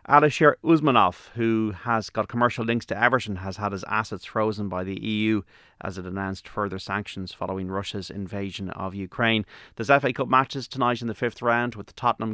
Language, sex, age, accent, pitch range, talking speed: English, male, 30-49, Irish, 100-120 Hz, 185 wpm